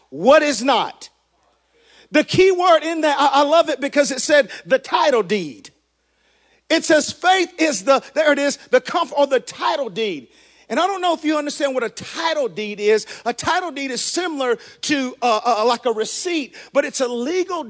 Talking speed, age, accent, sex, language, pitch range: 195 wpm, 50-69, American, male, English, 255-335 Hz